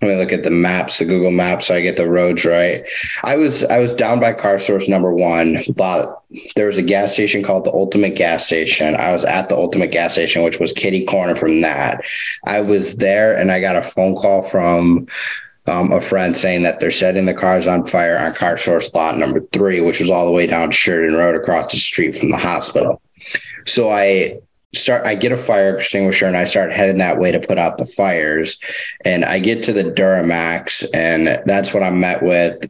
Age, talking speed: 20-39, 220 wpm